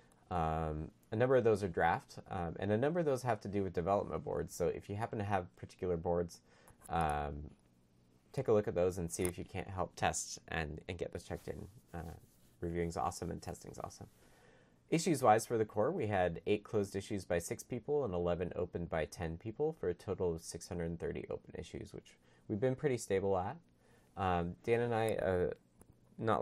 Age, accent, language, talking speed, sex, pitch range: 30-49, American, English, 205 wpm, male, 85-110 Hz